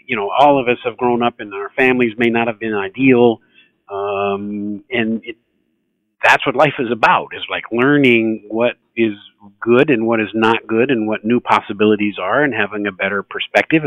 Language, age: English, 50-69